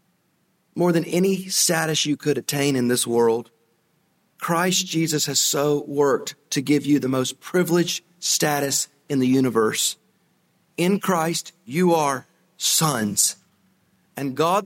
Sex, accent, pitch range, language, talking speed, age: male, American, 170-220 Hz, English, 130 wpm, 40-59